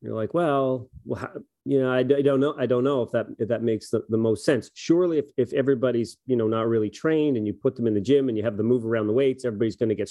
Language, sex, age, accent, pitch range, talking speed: English, male, 40-59, American, 110-130 Hz, 305 wpm